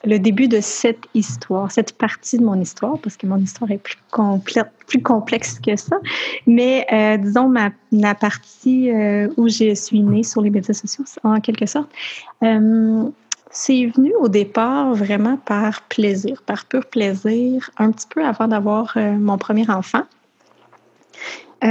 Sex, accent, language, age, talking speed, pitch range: female, Canadian, French, 30-49, 165 wpm, 210-240 Hz